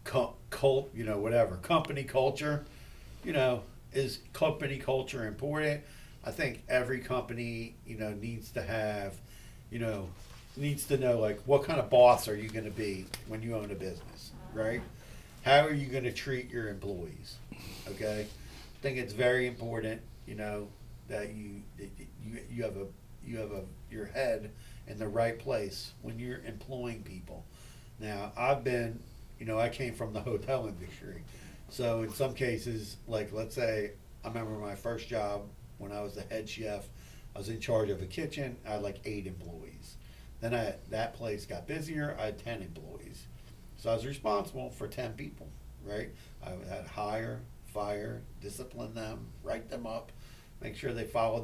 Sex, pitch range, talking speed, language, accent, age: male, 105-125 Hz, 175 wpm, English, American, 40-59